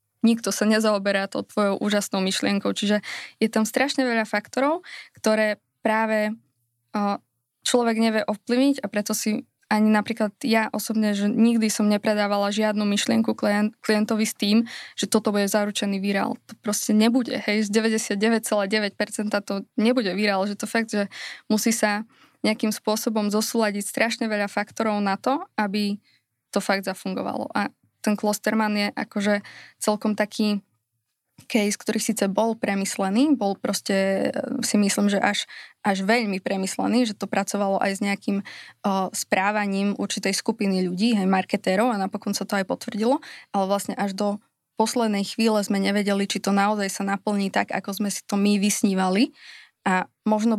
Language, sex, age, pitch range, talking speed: Slovak, female, 20-39, 200-220 Hz, 150 wpm